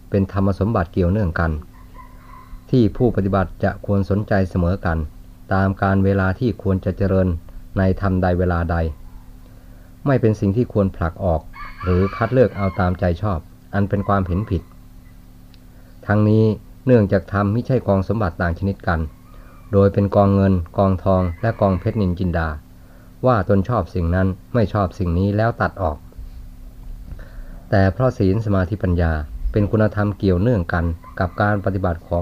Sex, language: male, Thai